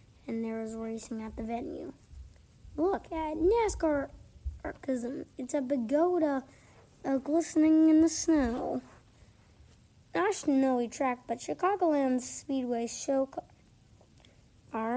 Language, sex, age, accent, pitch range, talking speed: English, female, 30-49, American, 235-290 Hz, 110 wpm